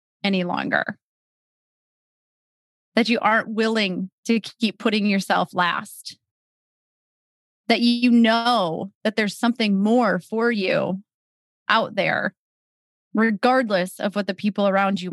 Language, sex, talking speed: English, female, 115 wpm